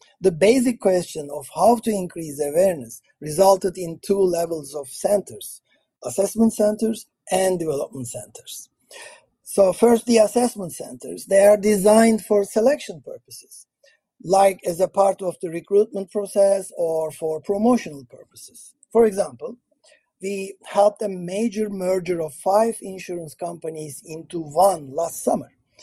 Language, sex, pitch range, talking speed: English, male, 170-215 Hz, 130 wpm